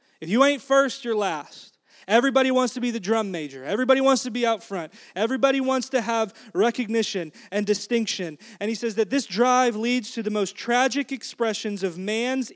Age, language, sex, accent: 30-49, English, male, American